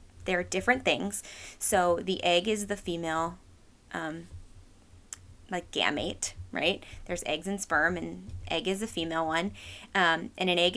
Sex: female